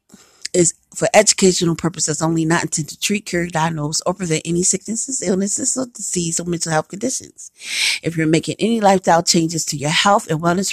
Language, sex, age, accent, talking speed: English, female, 40-59, American, 185 wpm